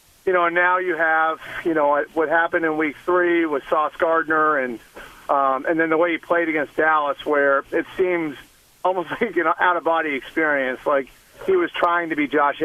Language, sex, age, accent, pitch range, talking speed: English, male, 40-59, American, 145-175 Hz, 190 wpm